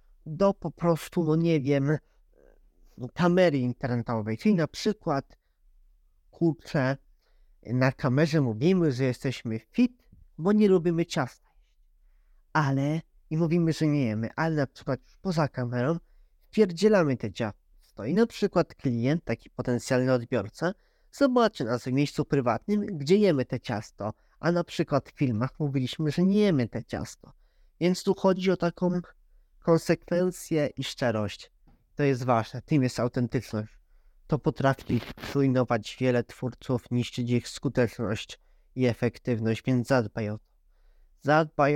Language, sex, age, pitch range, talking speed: Polish, male, 20-39, 120-160 Hz, 130 wpm